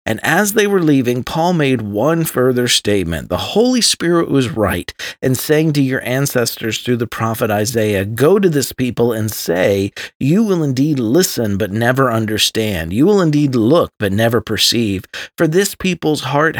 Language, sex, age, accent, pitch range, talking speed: English, male, 50-69, American, 110-150 Hz, 175 wpm